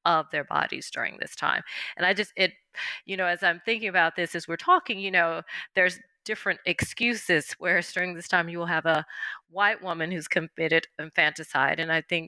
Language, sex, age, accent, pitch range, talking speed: English, female, 30-49, American, 150-180 Hz, 200 wpm